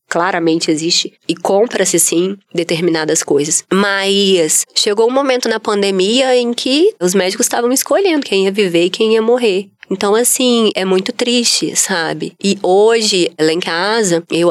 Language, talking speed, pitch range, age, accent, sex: Portuguese, 155 wpm, 175-230 Hz, 20-39, Brazilian, female